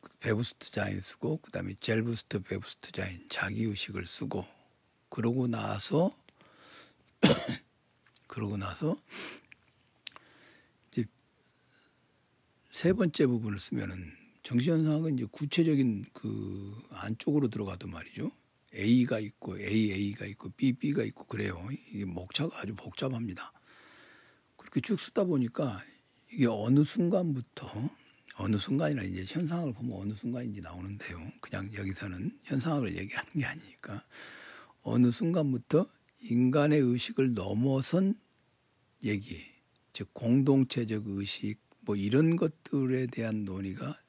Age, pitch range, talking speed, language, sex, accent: 60-79, 100-135 Hz, 100 wpm, English, male, Korean